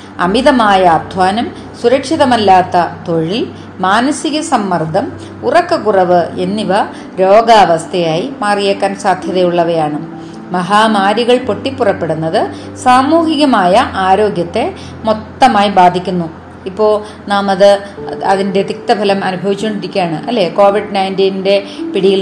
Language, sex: Malayalam, female